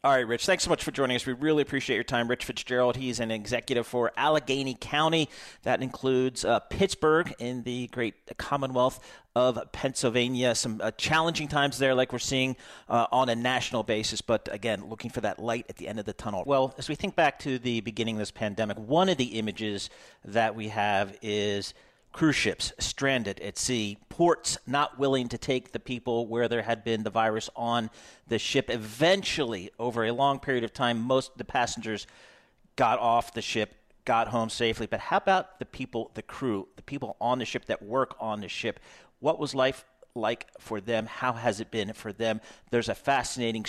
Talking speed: 200 wpm